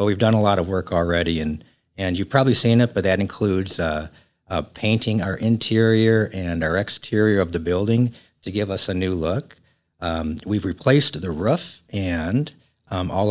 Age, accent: 50-69, American